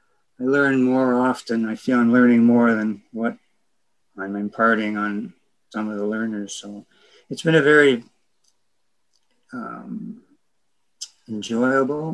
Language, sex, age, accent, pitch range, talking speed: English, male, 60-79, American, 110-130 Hz, 125 wpm